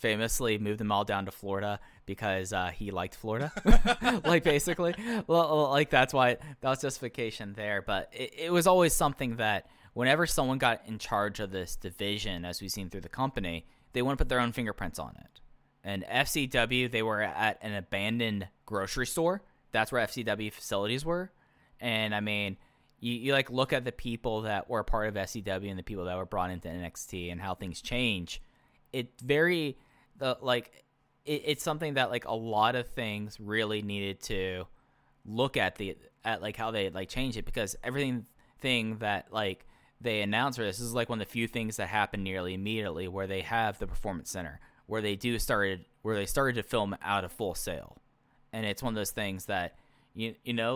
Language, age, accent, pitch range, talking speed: English, 10-29, American, 100-130 Hz, 200 wpm